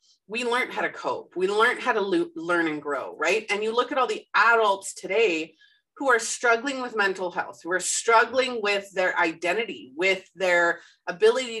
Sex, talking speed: female, 185 wpm